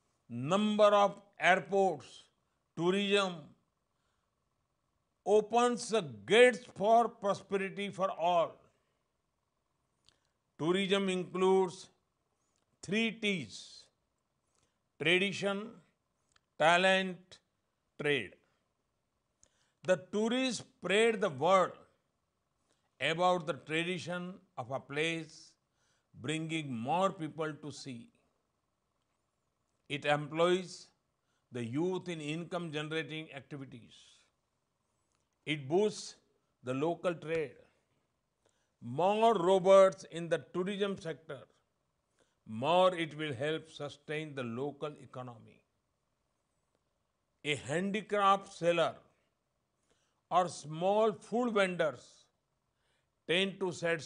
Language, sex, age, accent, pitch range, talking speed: Hindi, male, 50-69, native, 150-195 Hz, 80 wpm